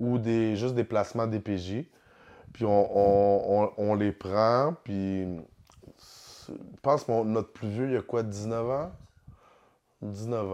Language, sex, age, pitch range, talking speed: French, male, 20-39, 100-125 Hz, 155 wpm